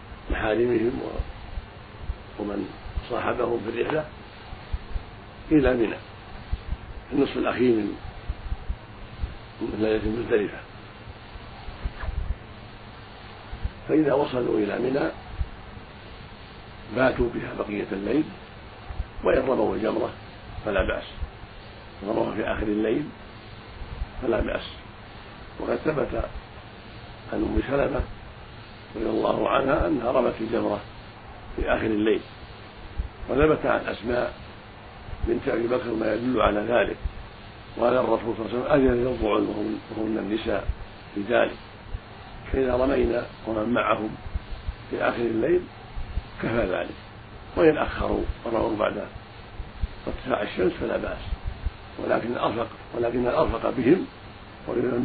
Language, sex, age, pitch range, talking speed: Arabic, male, 50-69, 100-115 Hz, 95 wpm